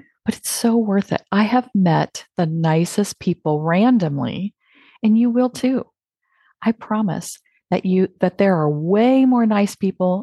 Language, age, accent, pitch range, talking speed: English, 40-59, American, 160-225 Hz, 160 wpm